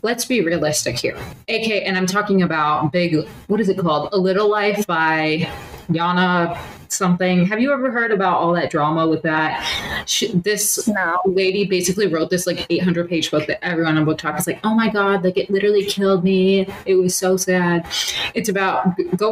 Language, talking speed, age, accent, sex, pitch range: English, 190 wpm, 20-39, American, female, 160-200 Hz